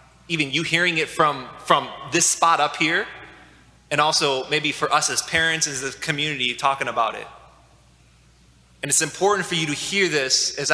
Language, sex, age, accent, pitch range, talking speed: English, male, 20-39, American, 150-195 Hz, 180 wpm